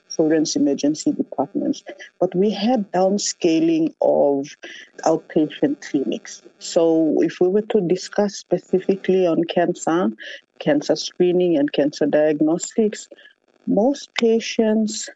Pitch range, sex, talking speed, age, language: 155-200 Hz, female, 100 wpm, 50-69, English